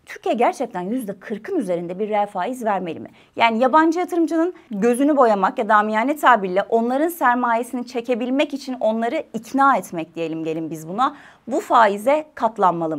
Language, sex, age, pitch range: Turkish, female, 30-49, 190-275 Hz